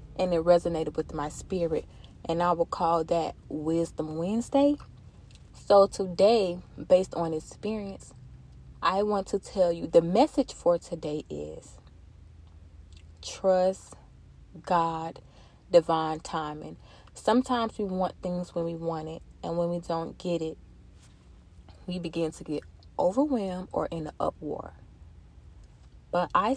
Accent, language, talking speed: American, English, 125 wpm